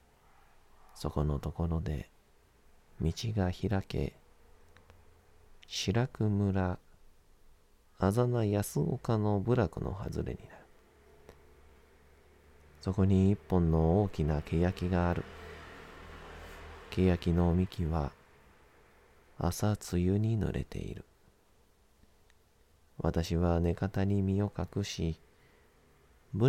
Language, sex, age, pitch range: Japanese, male, 40-59, 80-95 Hz